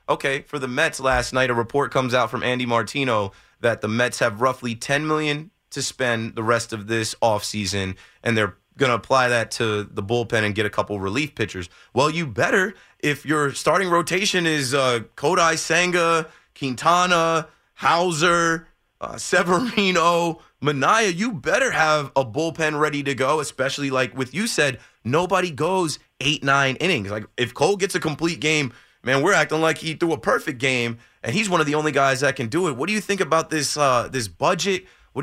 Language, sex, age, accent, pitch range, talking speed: English, male, 20-39, American, 125-170 Hz, 190 wpm